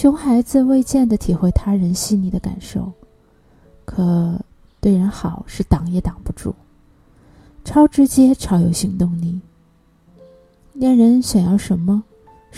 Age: 20-39